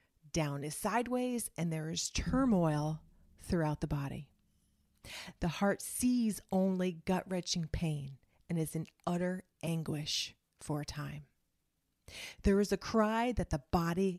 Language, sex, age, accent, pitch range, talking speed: English, female, 30-49, American, 145-185 Hz, 130 wpm